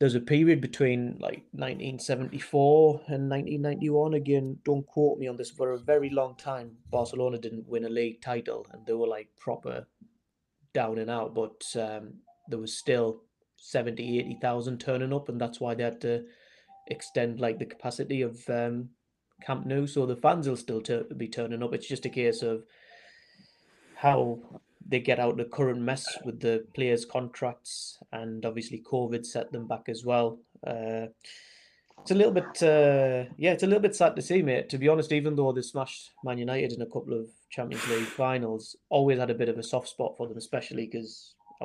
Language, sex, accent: English, male, British